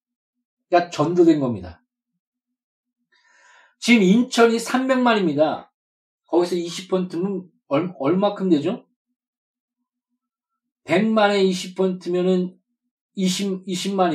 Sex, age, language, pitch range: male, 40-59, Korean, 185-245 Hz